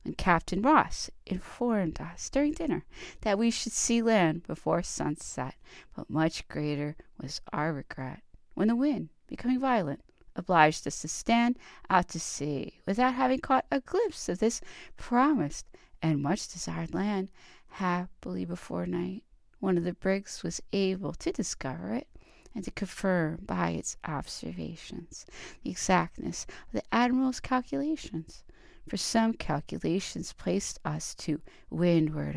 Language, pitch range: English, 170-260 Hz